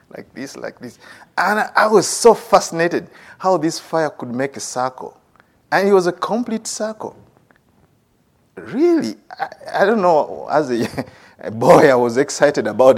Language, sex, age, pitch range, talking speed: English, male, 50-69, 135-205 Hz, 160 wpm